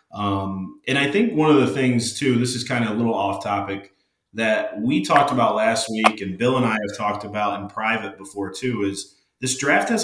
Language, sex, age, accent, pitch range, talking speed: English, male, 30-49, American, 100-130 Hz, 225 wpm